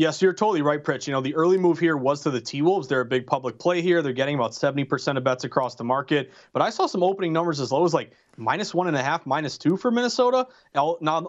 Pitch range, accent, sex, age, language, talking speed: 145-175 Hz, American, male, 30-49, English, 265 wpm